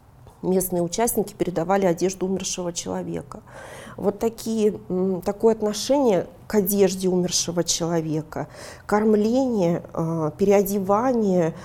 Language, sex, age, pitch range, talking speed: Russian, female, 40-59, 175-210 Hz, 80 wpm